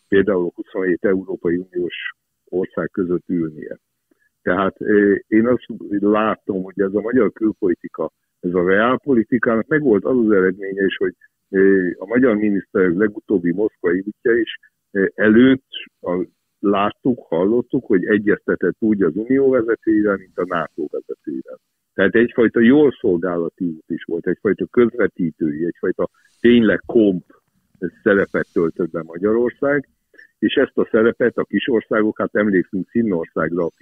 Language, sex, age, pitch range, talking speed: Hungarian, male, 60-79, 95-125 Hz, 130 wpm